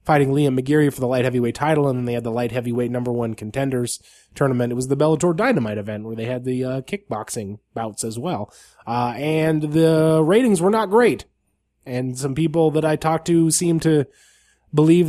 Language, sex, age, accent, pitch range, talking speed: English, male, 20-39, American, 115-155 Hz, 205 wpm